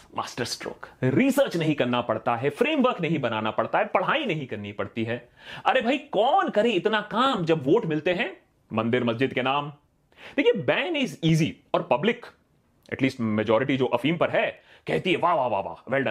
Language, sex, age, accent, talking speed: Hindi, male, 30-49, native, 170 wpm